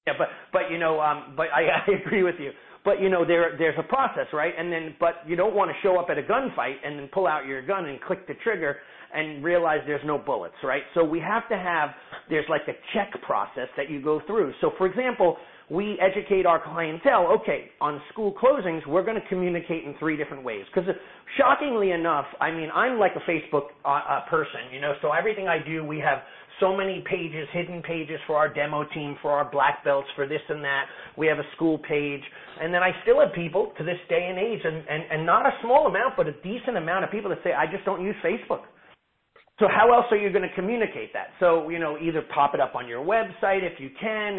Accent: American